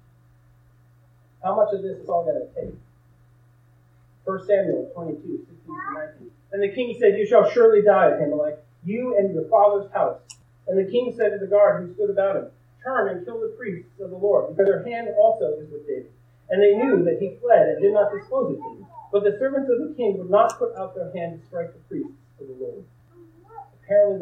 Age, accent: 40-59, American